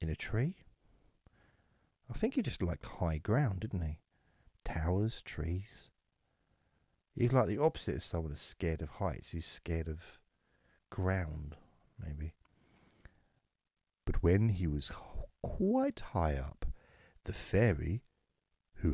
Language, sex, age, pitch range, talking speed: English, male, 50-69, 75-100 Hz, 125 wpm